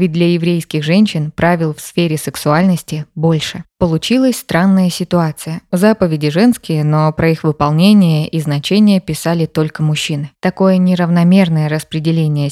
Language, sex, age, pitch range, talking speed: Russian, female, 20-39, 160-190 Hz, 125 wpm